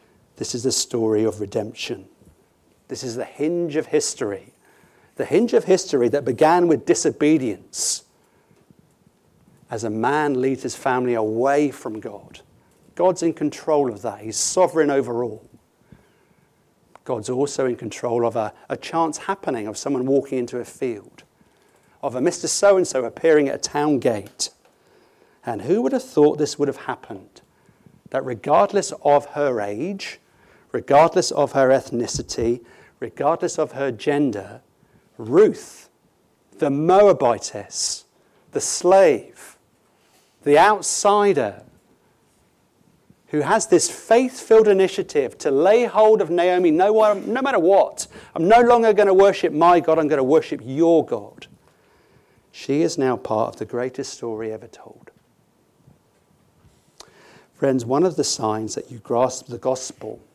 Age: 40-59